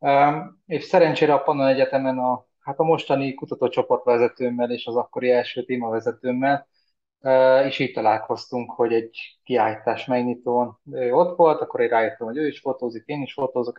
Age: 20-39